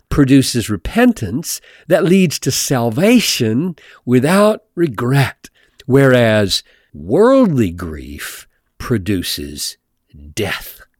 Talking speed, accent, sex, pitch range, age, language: 70 wpm, American, male, 100-150 Hz, 50-69, English